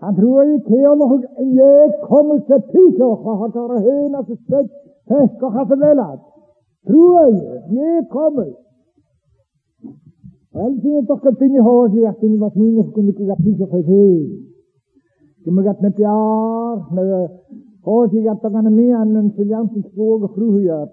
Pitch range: 190-270 Hz